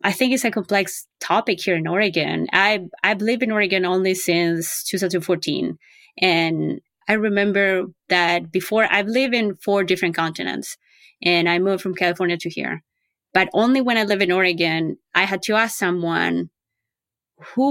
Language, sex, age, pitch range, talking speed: English, female, 20-39, 180-230 Hz, 165 wpm